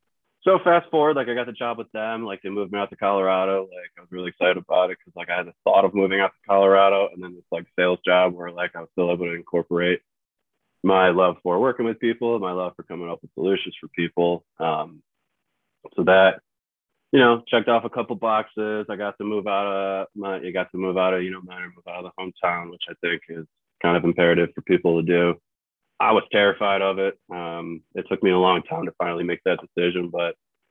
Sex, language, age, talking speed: male, English, 20-39, 240 wpm